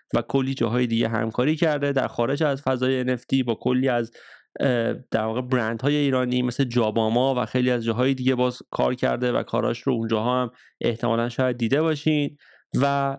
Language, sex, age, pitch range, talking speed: Persian, male, 30-49, 120-140 Hz, 175 wpm